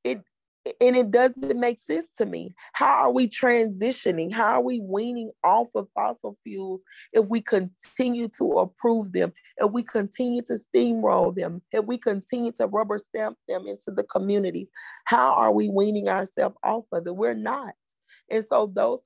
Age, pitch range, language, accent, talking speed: 30-49, 185-230 Hz, English, American, 170 wpm